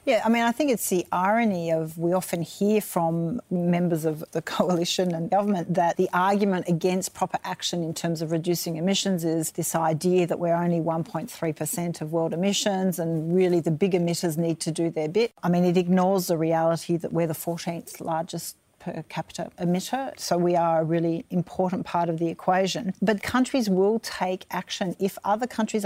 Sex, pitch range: female, 170-195 Hz